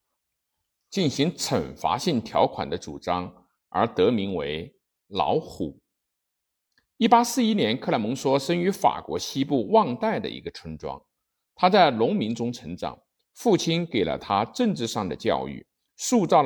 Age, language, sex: 50-69, Chinese, male